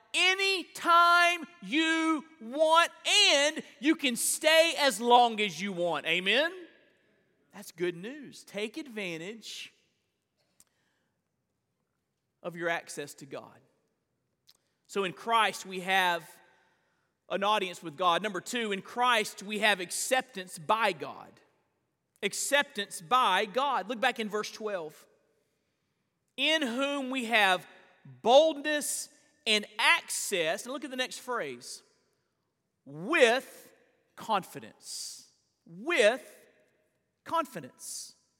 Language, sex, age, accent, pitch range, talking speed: English, male, 40-59, American, 210-285 Hz, 105 wpm